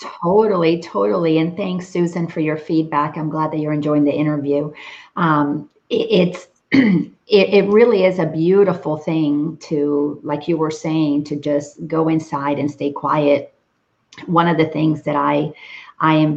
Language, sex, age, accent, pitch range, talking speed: English, female, 40-59, American, 150-190 Hz, 160 wpm